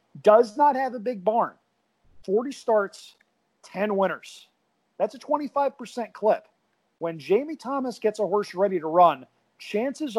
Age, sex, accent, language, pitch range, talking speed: 40-59, male, American, English, 175-240 Hz, 140 wpm